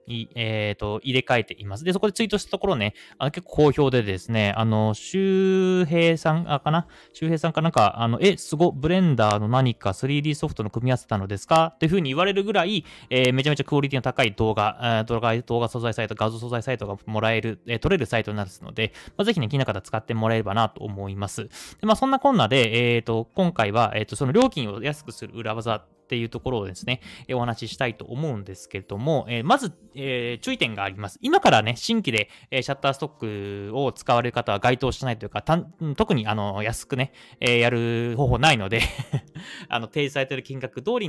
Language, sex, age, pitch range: Japanese, male, 20-39, 110-160 Hz